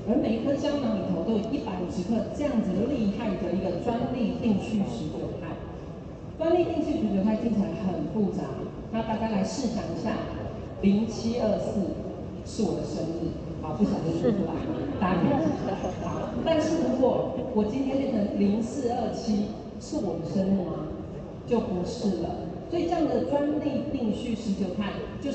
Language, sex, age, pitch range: Chinese, female, 40-59, 185-240 Hz